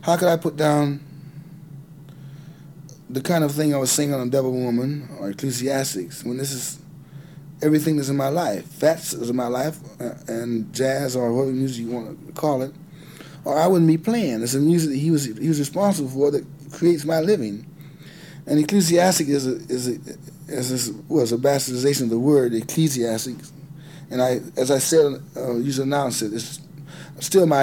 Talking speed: 190 wpm